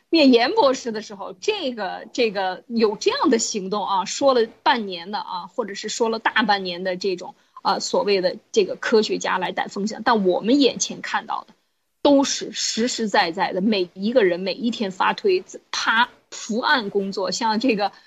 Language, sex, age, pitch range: Chinese, female, 20-39, 205-280 Hz